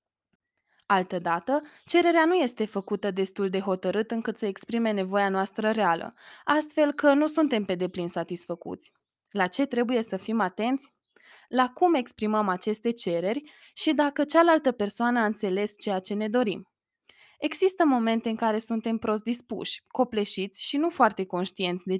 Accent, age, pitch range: Romanian, 20-39, 195-255 Hz